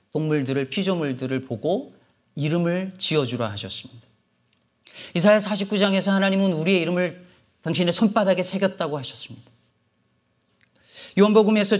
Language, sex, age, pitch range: Korean, male, 40-59, 120-175 Hz